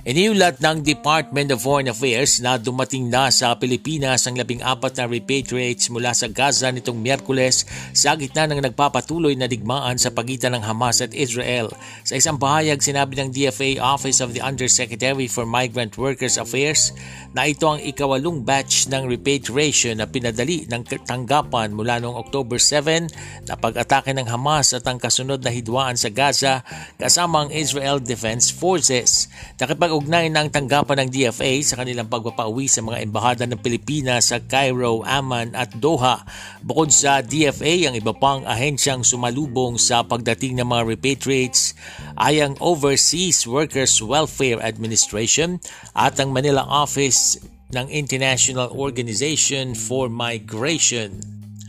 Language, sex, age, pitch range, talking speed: Filipino, male, 50-69, 120-145 Hz, 145 wpm